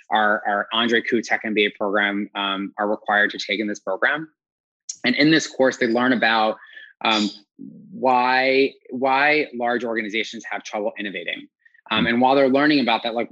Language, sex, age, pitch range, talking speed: English, male, 20-39, 105-125 Hz, 170 wpm